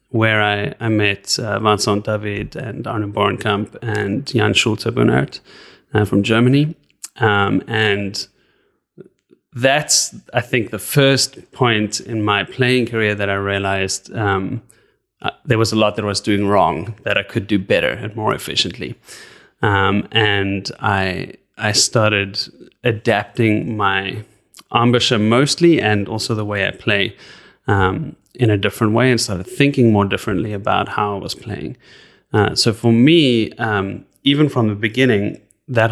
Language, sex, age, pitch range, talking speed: English, male, 20-39, 100-120 Hz, 150 wpm